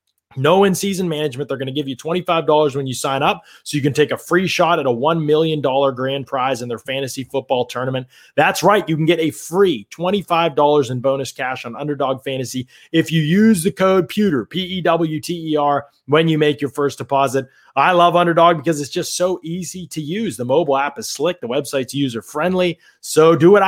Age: 30-49